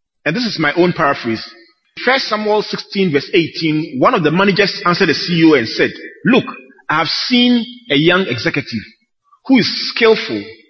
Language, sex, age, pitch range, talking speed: English, male, 40-59, 150-230 Hz, 170 wpm